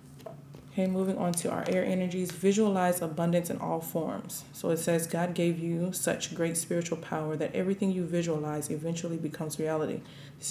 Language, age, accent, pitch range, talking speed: English, 20-39, American, 150-175 Hz, 170 wpm